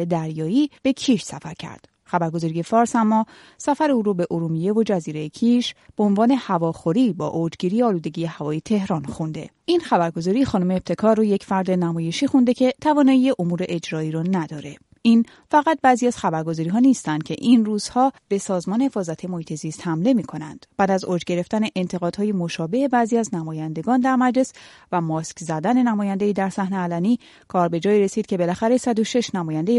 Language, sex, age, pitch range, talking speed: Persian, female, 30-49, 170-235 Hz, 165 wpm